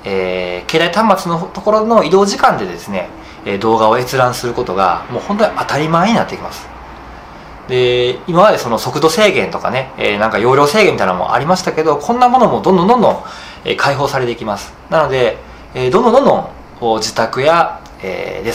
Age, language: 20-39, Japanese